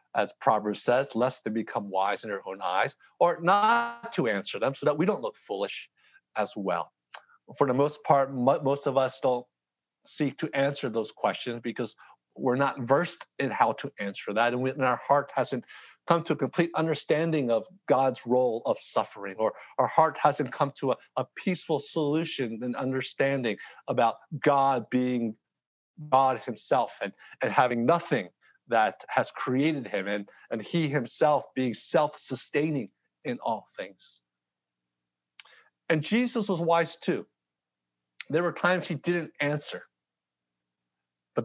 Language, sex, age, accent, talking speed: English, male, 50-69, American, 155 wpm